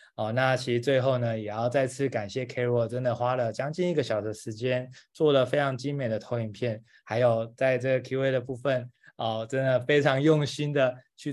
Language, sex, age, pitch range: Chinese, male, 20-39, 120-140 Hz